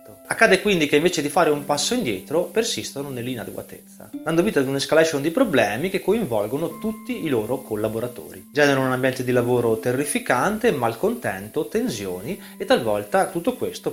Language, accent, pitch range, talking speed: Italian, native, 130-190 Hz, 155 wpm